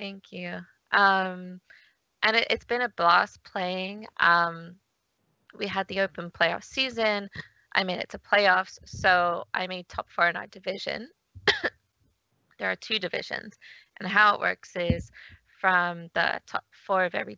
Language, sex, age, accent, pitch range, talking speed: English, female, 20-39, American, 175-200 Hz, 155 wpm